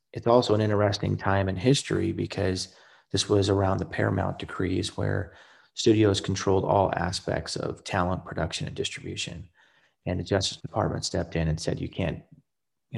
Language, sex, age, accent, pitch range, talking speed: English, male, 30-49, American, 85-100 Hz, 155 wpm